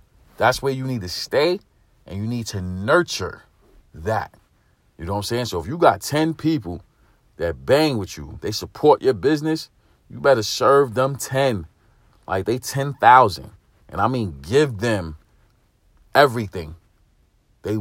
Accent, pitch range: American, 100-135 Hz